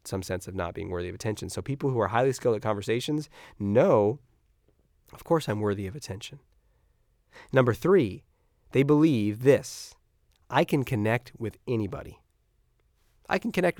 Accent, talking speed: American, 155 wpm